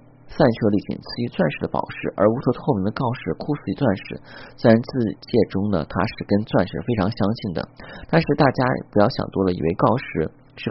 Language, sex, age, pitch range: Chinese, male, 30-49, 95-130 Hz